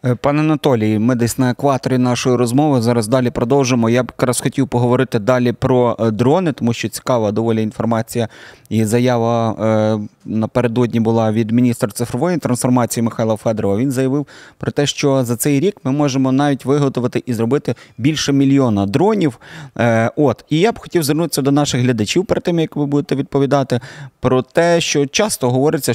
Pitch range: 120-145 Hz